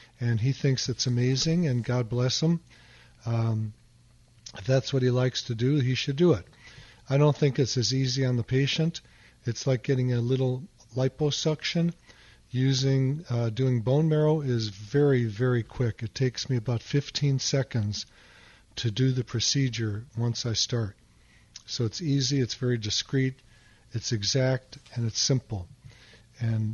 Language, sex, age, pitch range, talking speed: English, male, 50-69, 120-135 Hz, 155 wpm